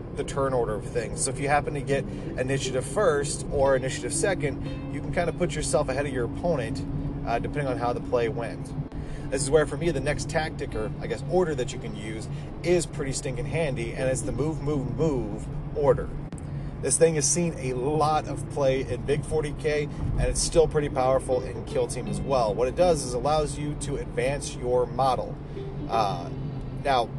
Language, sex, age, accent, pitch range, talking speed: English, male, 30-49, American, 130-150 Hz, 205 wpm